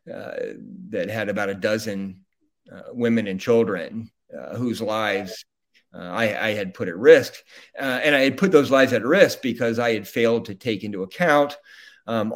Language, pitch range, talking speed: English, 100-130 Hz, 185 wpm